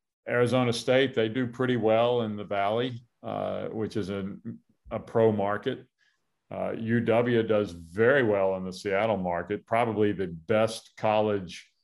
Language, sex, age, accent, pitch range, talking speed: English, male, 40-59, American, 100-115 Hz, 145 wpm